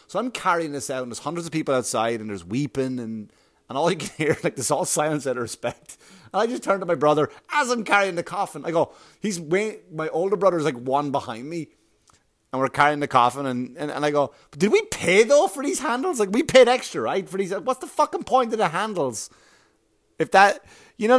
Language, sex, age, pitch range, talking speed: English, male, 30-49, 135-200 Hz, 245 wpm